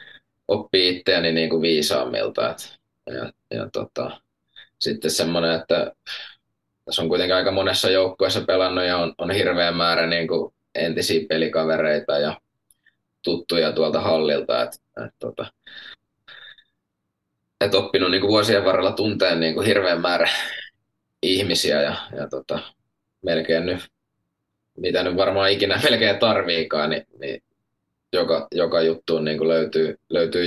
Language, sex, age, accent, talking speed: Finnish, male, 20-39, native, 125 wpm